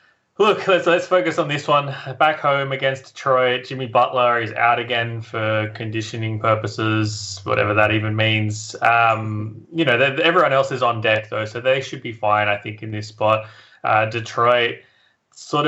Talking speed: 170 wpm